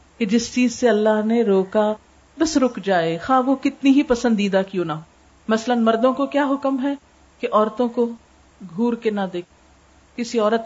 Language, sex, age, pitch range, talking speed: Urdu, female, 50-69, 210-260 Hz, 180 wpm